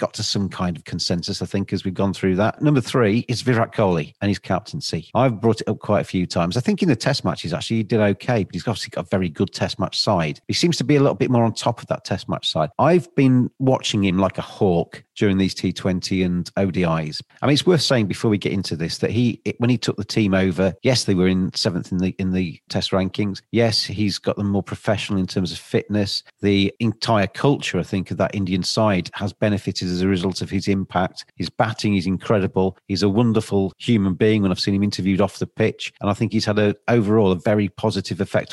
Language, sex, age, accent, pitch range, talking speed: English, male, 40-59, British, 95-115 Hz, 250 wpm